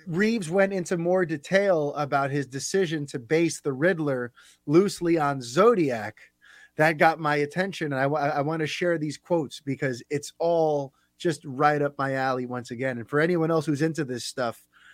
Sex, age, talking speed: male, 30-49, 175 wpm